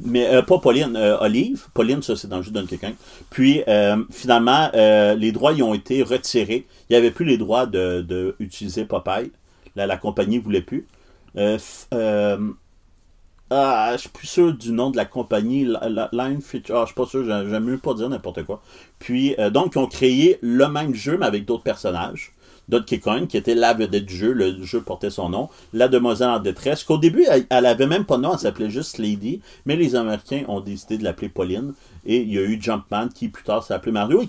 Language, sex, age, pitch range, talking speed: French, male, 30-49, 105-145 Hz, 235 wpm